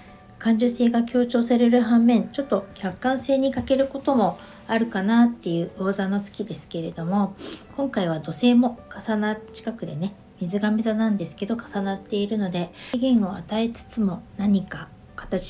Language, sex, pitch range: Japanese, female, 180-230 Hz